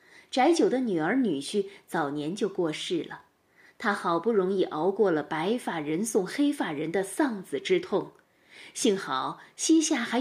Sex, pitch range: female, 190-320 Hz